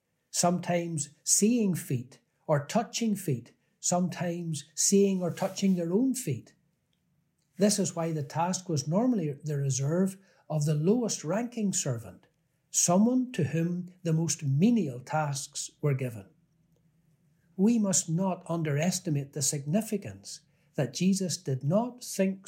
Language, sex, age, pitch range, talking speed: English, male, 60-79, 145-190 Hz, 125 wpm